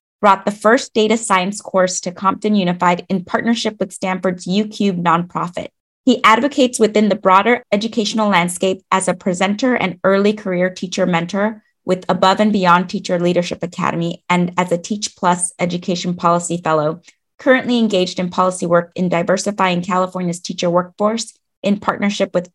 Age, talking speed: 20-39, 155 wpm